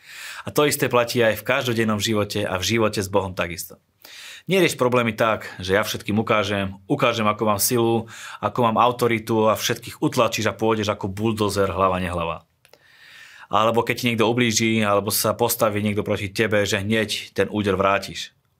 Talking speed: 170 wpm